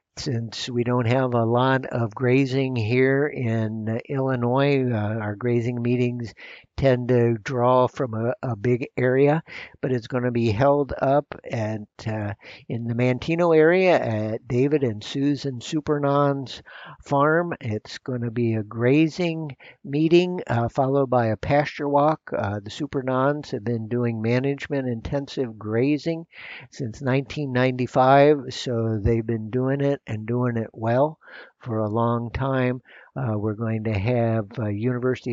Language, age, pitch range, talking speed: English, 60-79, 115-140 Hz, 145 wpm